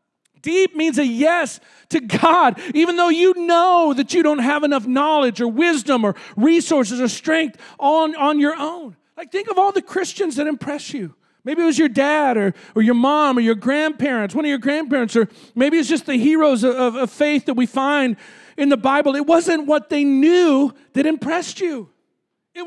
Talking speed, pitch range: 200 wpm, 250-330 Hz